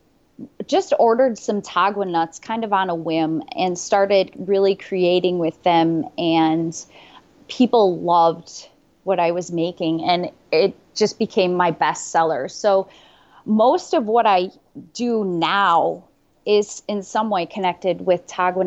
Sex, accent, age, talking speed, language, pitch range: female, American, 20-39, 140 wpm, English, 175-210 Hz